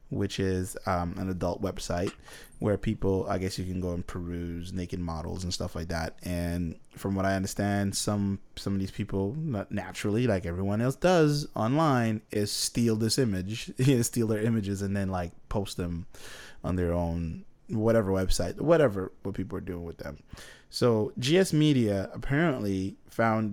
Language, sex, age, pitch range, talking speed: English, male, 20-39, 95-115 Hz, 170 wpm